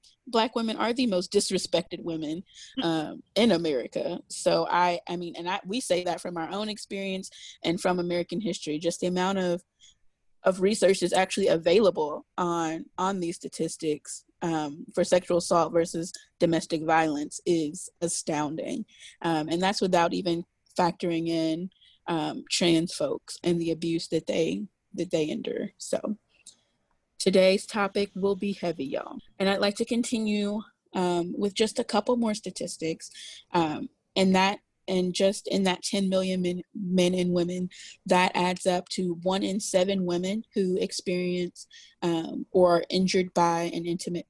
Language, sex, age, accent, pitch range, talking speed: English, female, 20-39, American, 170-210 Hz, 160 wpm